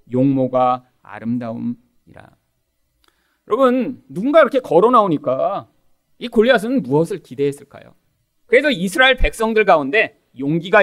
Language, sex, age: Korean, male, 40-59